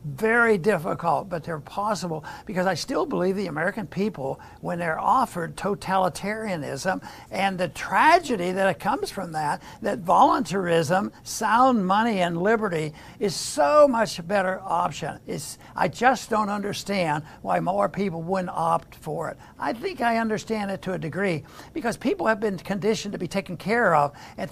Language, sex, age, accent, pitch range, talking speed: English, male, 60-79, American, 175-220 Hz, 165 wpm